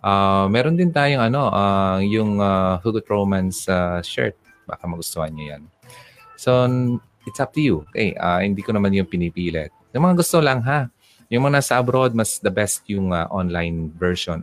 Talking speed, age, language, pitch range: 185 wpm, 20-39, Filipino, 85-120 Hz